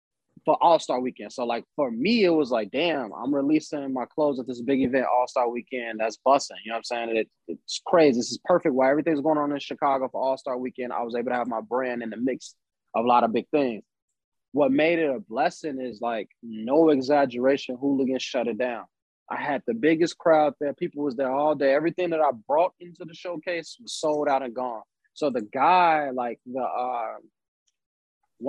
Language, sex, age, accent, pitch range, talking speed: English, male, 20-39, American, 130-165 Hz, 215 wpm